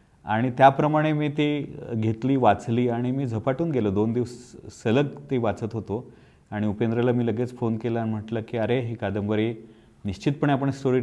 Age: 30-49